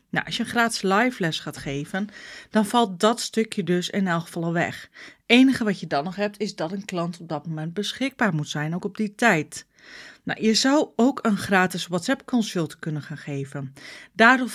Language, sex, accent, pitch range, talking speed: Dutch, female, Dutch, 180-220 Hz, 215 wpm